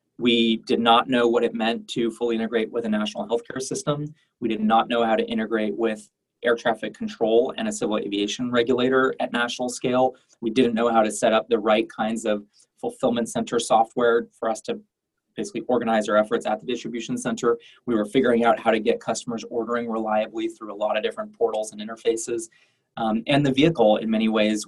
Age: 20-39